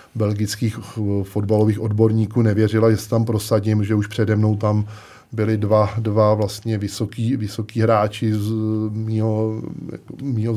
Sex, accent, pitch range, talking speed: male, native, 100-110 Hz, 130 wpm